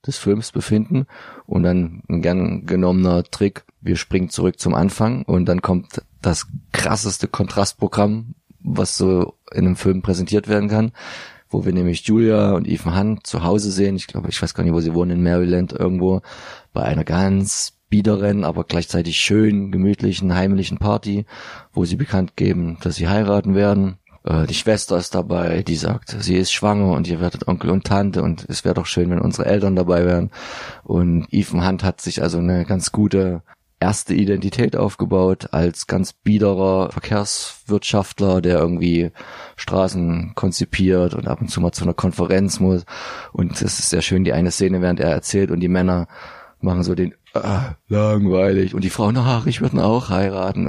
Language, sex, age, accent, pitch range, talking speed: German, male, 30-49, German, 90-105 Hz, 180 wpm